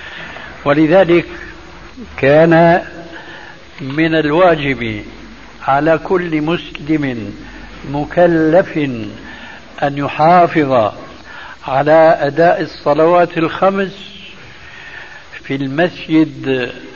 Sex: male